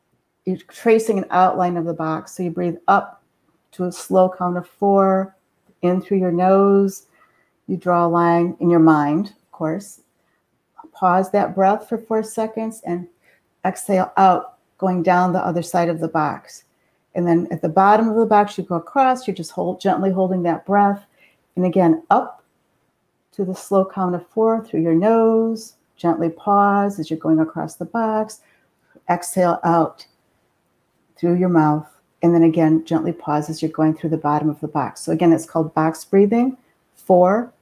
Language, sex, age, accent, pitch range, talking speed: English, female, 50-69, American, 170-200 Hz, 175 wpm